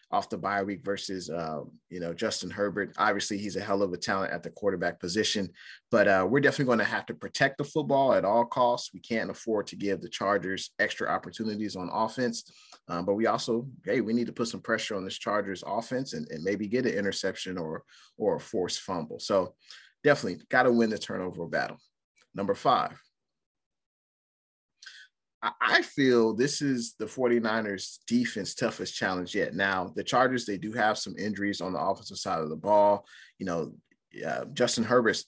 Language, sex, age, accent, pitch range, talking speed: English, male, 30-49, American, 100-120 Hz, 190 wpm